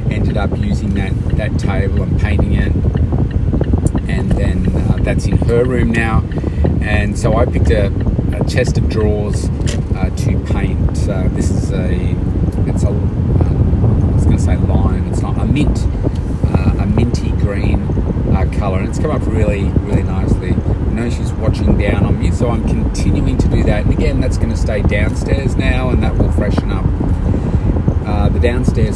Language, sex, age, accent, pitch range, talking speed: English, male, 30-49, Australian, 85-100 Hz, 180 wpm